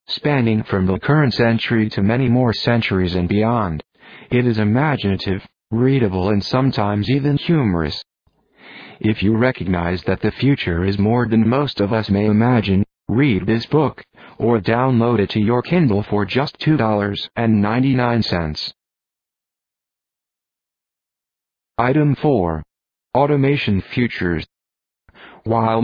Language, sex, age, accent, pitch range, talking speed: English, male, 50-69, American, 100-130 Hz, 115 wpm